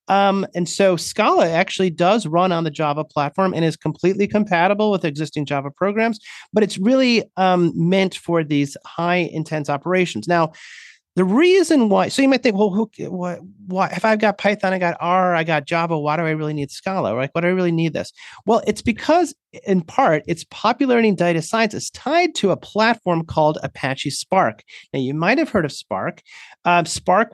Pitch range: 155-205 Hz